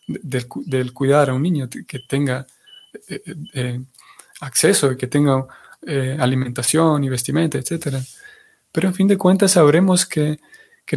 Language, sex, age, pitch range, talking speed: Spanish, male, 20-39, 135-160 Hz, 140 wpm